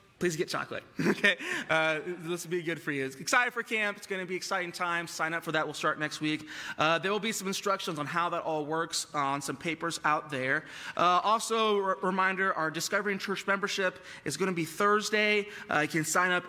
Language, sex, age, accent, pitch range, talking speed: English, male, 20-39, American, 150-195 Hz, 235 wpm